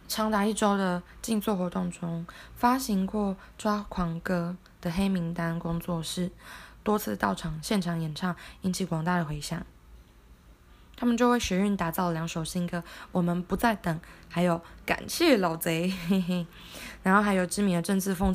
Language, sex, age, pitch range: Chinese, female, 20-39, 165-195 Hz